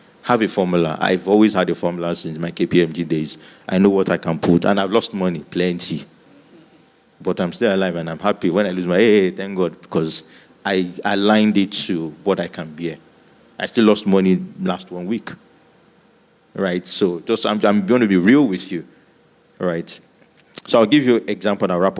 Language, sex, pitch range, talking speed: English, male, 85-105 Hz, 200 wpm